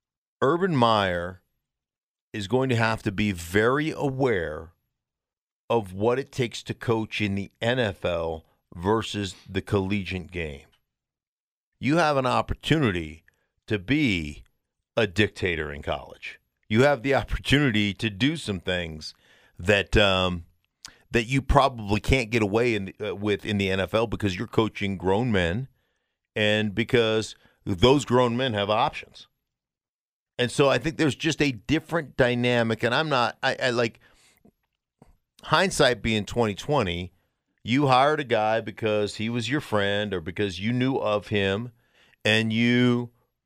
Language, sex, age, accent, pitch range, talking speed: English, male, 50-69, American, 100-125 Hz, 140 wpm